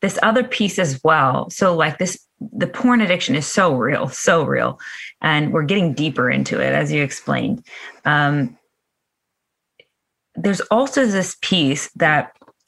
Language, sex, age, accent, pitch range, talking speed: English, female, 20-39, American, 155-195 Hz, 145 wpm